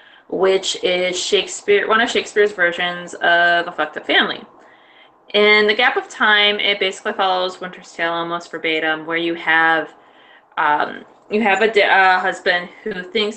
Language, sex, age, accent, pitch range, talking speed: English, female, 20-39, American, 165-195 Hz, 155 wpm